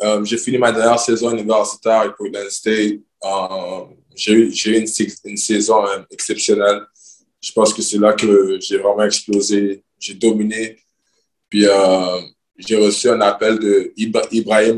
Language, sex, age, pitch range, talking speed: French, male, 20-39, 100-115 Hz, 160 wpm